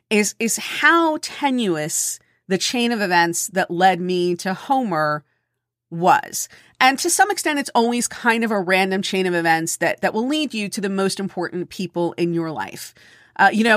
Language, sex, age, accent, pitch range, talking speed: English, female, 40-59, American, 175-210 Hz, 190 wpm